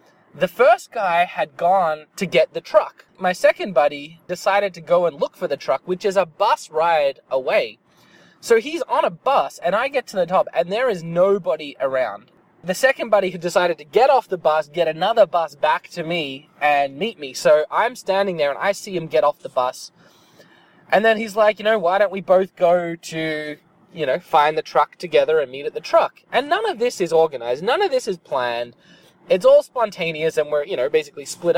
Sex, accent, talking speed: male, Australian, 220 wpm